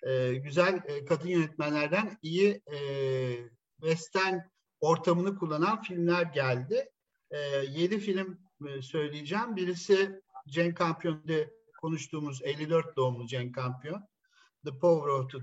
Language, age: Turkish, 50-69